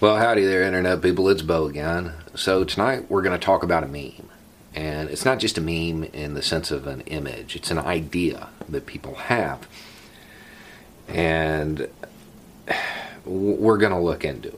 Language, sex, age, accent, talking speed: English, male, 40-59, American, 170 wpm